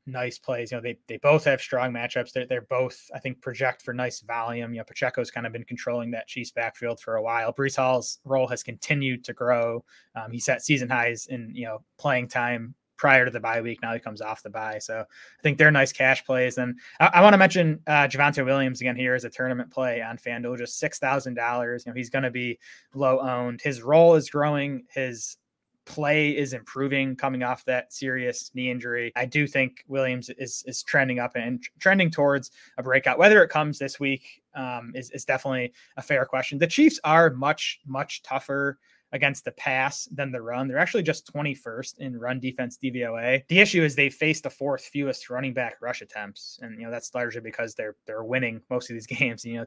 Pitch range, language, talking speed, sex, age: 120-135 Hz, English, 220 wpm, male, 20-39